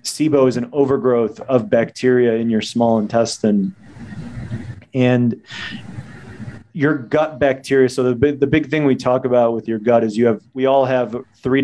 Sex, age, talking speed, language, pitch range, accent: male, 30-49, 165 wpm, English, 115-135 Hz, American